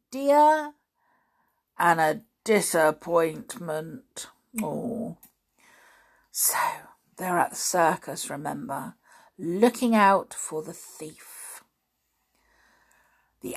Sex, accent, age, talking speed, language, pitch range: female, British, 50-69, 70 wpm, English, 185-300 Hz